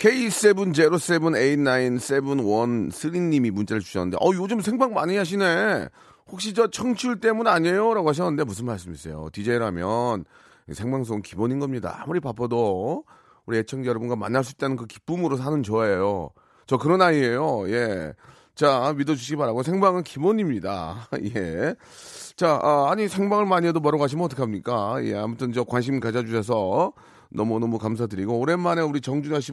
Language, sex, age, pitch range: Korean, male, 30-49, 120-170 Hz